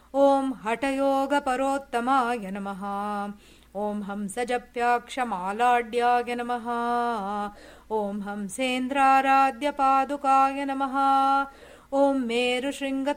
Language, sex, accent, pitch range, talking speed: English, female, Indian, 235-275 Hz, 70 wpm